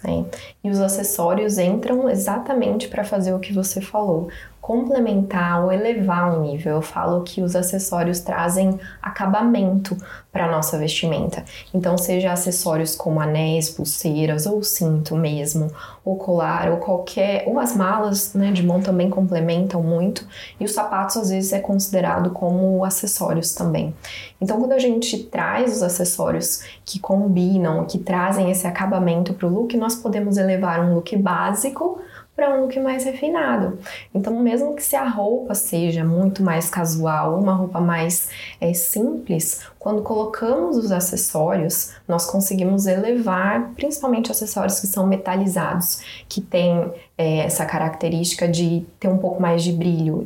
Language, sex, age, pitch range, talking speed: Portuguese, female, 20-39, 170-210 Hz, 150 wpm